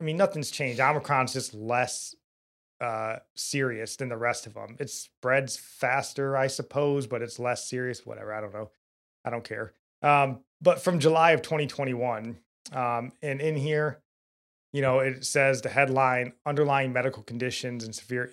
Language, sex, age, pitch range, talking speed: English, male, 30-49, 120-140 Hz, 165 wpm